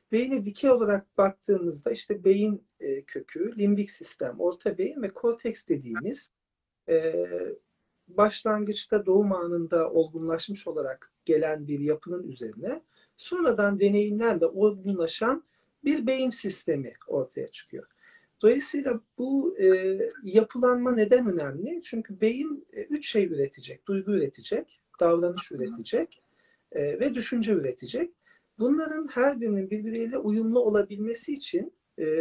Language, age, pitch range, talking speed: Turkish, 50-69, 195-300 Hz, 105 wpm